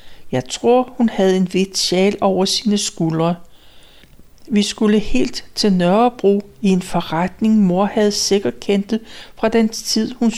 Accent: native